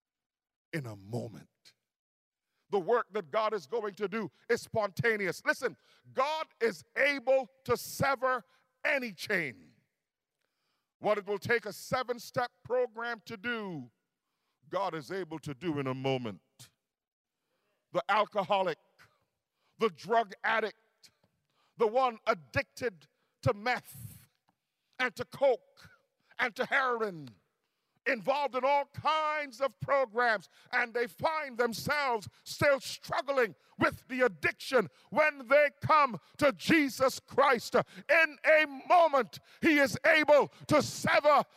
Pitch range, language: 210-275 Hz, English